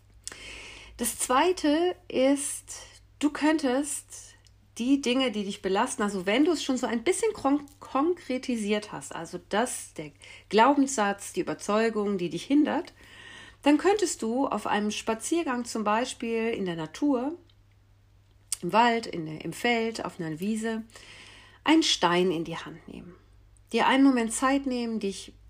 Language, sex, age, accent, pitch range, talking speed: German, female, 40-59, German, 160-255 Hz, 145 wpm